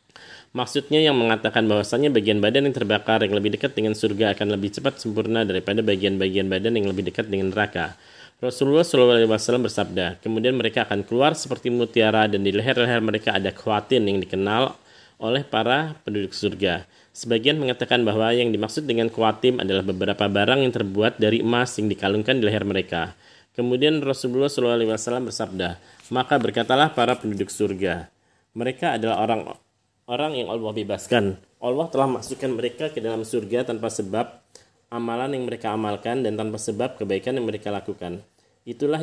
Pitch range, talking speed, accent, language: 105-125 Hz, 155 wpm, native, Indonesian